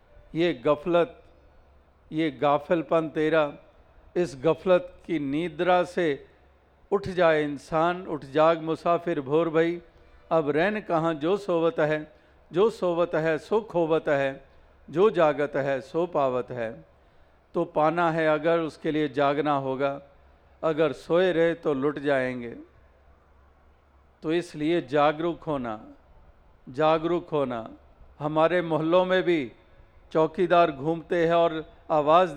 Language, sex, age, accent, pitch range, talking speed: Hindi, male, 50-69, native, 130-165 Hz, 120 wpm